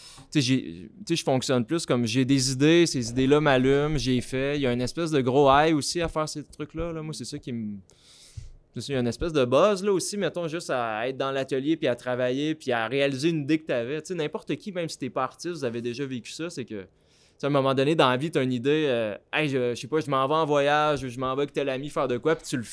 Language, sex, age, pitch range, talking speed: French, male, 20-39, 125-155 Hz, 280 wpm